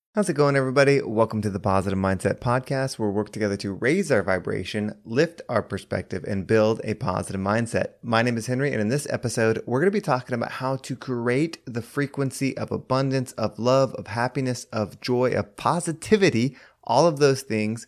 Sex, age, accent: male, 20-39, American